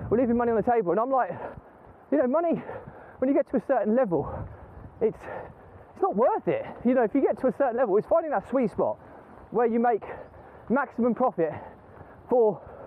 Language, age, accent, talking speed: English, 20-39, British, 205 wpm